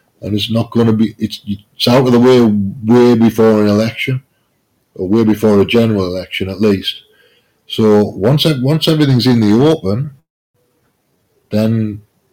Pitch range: 100-115 Hz